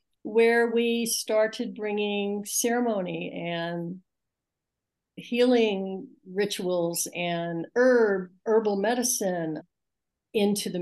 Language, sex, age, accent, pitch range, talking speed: English, female, 60-79, American, 195-235 Hz, 80 wpm